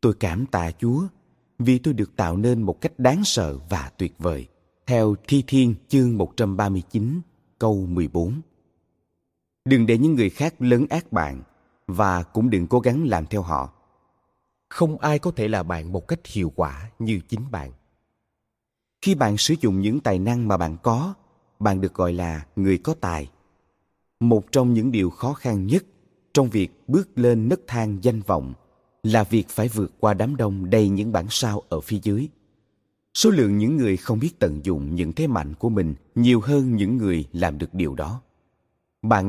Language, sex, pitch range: Vietnamese, male, 90-125 Hz